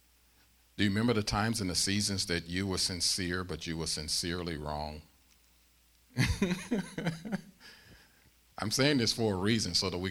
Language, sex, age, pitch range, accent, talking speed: English, male, 50-69, 65-100 Hz, American, 155 wpm